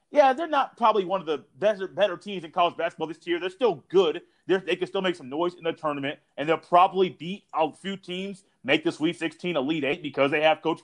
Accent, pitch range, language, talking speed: American, 145-185 Hz, English, 250 wpm